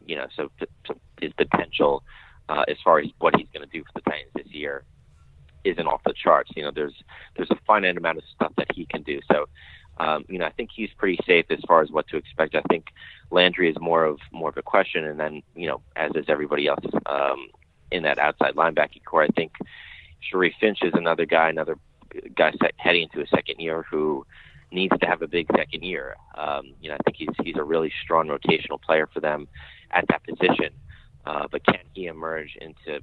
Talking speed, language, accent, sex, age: 220 wpm, English, American, male, 30-49